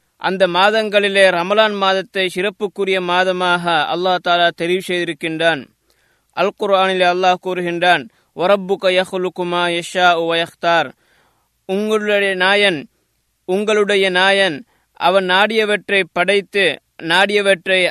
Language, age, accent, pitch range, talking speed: Tamil, 20-39, native, 180-205 Hz, 90 wpm